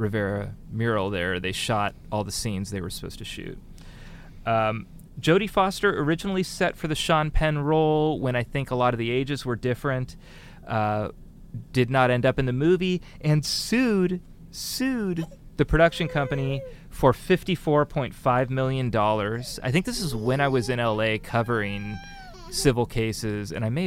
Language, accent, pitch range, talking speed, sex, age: English, American, 110-150 Hz, 165 wpm, male, 30-49